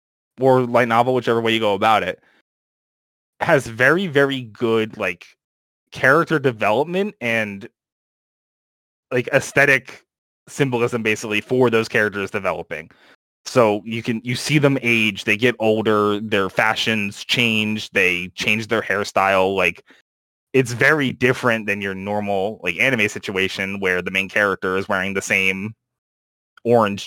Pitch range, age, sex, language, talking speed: 95-125 Hz, 20-39, male, English, 135 wpm